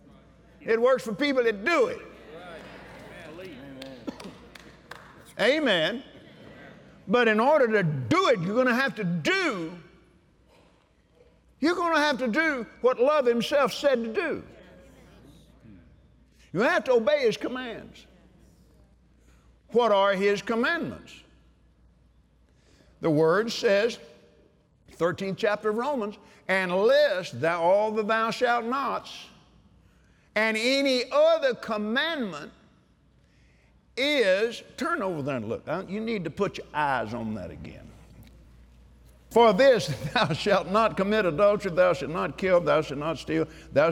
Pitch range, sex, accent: 170-265 Hz, male, American